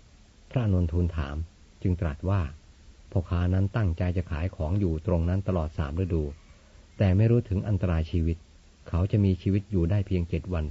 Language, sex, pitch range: Thai, male, 80-95 Hz